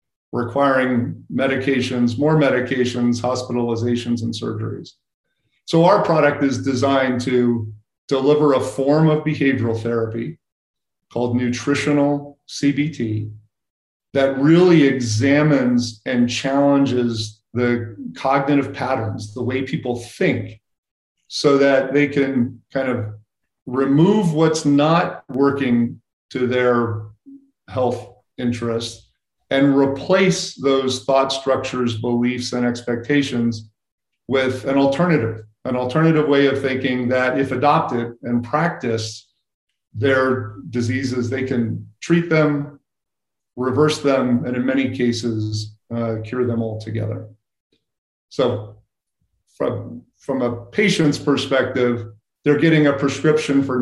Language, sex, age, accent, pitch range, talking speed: English, male, 40-59, American, 120-140 Hz, 105 wpm